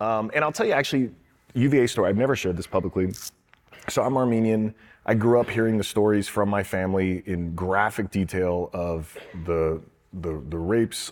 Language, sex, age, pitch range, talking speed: English, male, 30-49, 95-120 Hz, 180 wpm